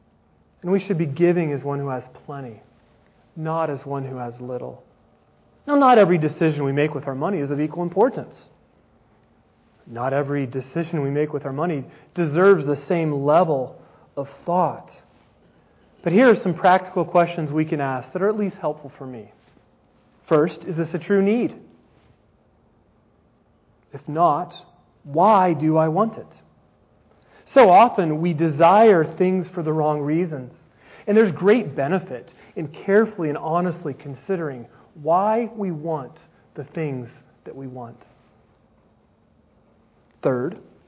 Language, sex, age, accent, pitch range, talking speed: English, male, 40-59, American, 140-180 Hz, 145 wpm